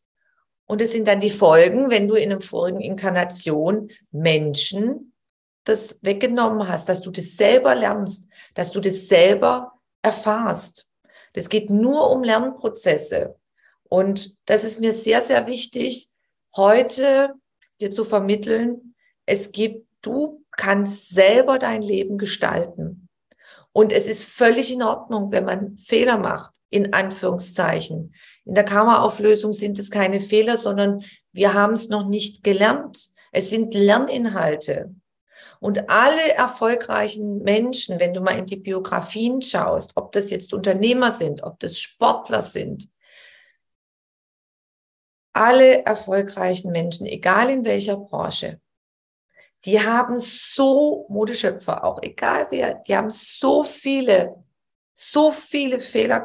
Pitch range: 195-245 Hz